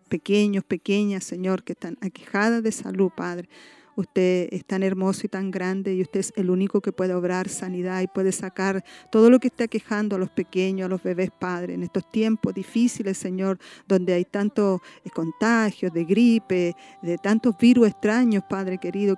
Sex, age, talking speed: female, 50-69, 180 wpm